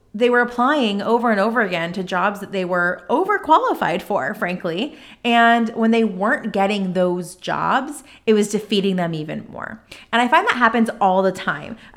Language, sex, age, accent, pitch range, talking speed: English, female, 30-49, American, 185-235 Hz, 180 wpm